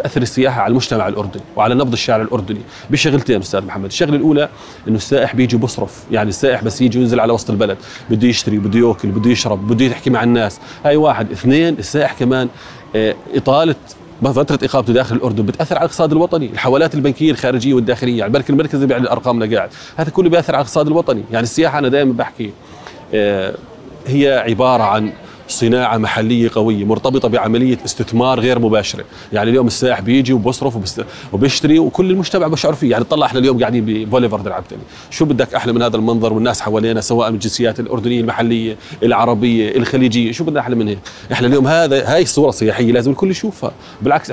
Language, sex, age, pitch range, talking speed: Arabic, male, 30-49, 110-135 Hz, 175 wpm